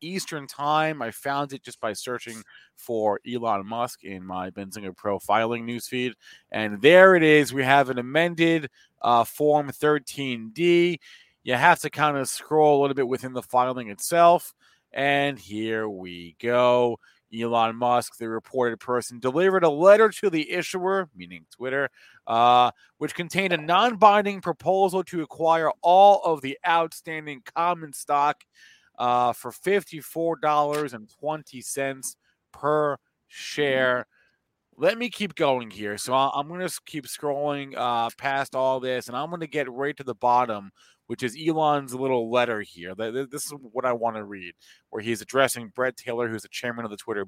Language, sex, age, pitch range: English, male, 30-49, 120-160 Hz